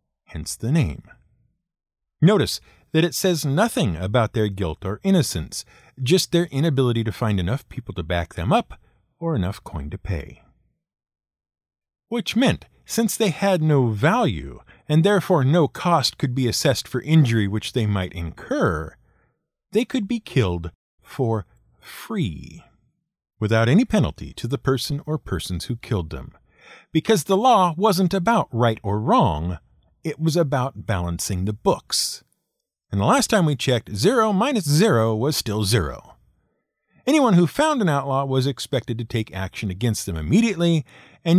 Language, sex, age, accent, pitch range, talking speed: English, male, 50-69, American, 100-170 Hz, 150 wpm